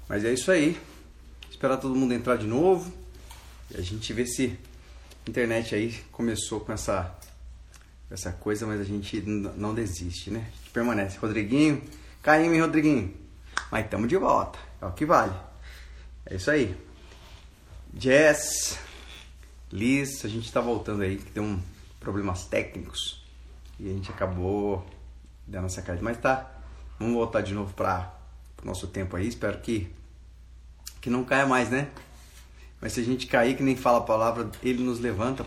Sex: male